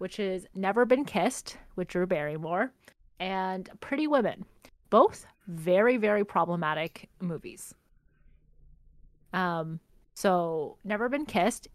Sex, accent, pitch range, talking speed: female, American, 170-210 Hz, 105 wpm